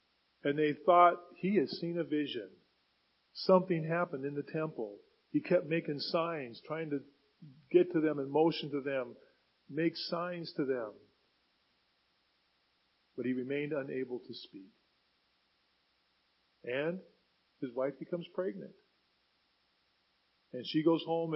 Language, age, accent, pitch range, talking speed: English, 40-59, American, 130-160 Hz, 125 wpm